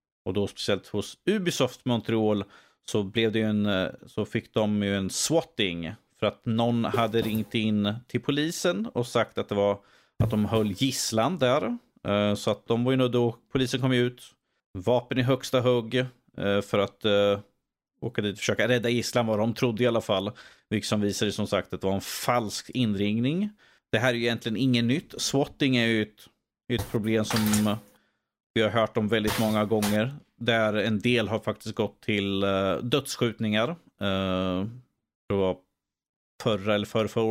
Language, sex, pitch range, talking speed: Swedish, male, 105-120 Hz, 175 wpm